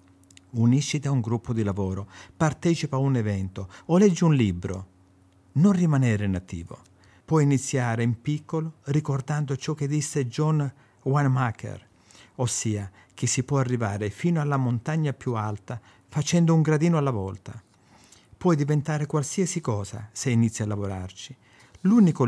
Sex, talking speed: male, 135 wpm